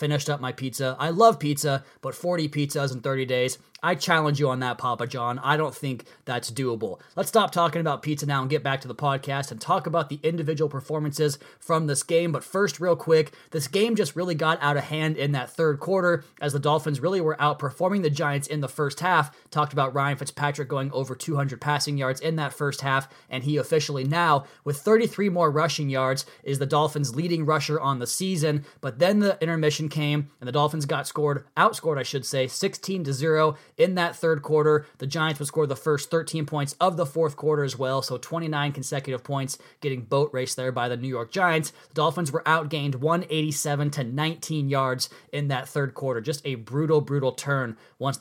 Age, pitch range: 20-39, 140-160 Hz